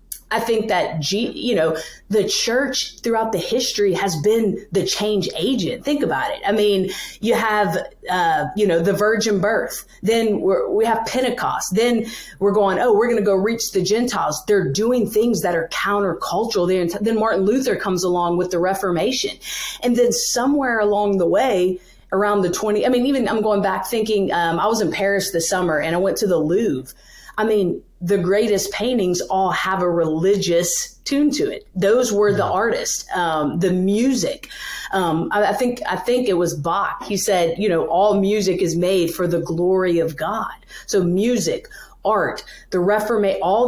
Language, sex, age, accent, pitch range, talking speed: English, female, 30-49, American, 180-225 Hz, 185 wpm